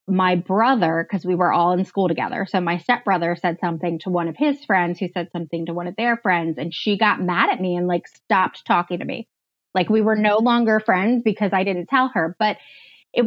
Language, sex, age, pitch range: English, female, 20-39, 180-245 Hz